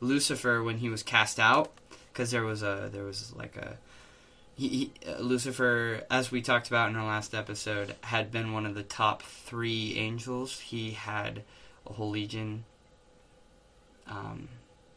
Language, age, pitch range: English, 20-39, 110-140 Hz